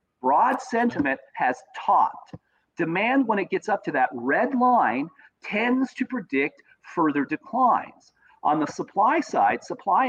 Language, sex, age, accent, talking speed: English, male, 40-59, American, 135 wpm